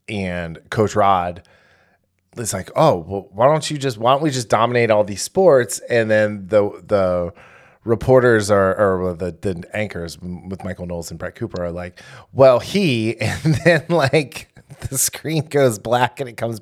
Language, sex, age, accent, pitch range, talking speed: English, male, 20-39, American, 100-130 Hz, 185 wpm